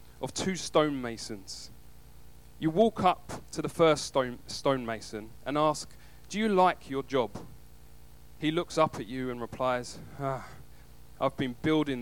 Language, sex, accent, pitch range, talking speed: English, male, British, 110-160 Hz, 140 wpm